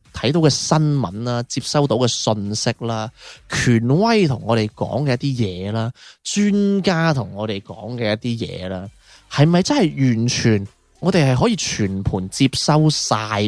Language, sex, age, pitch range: Chinese, male, 20-39, 110-150 Hz